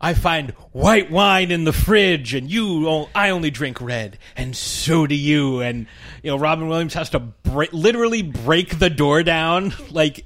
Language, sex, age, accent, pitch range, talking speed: English, male, 30-49, American, 115-160 Hz, 185 wpm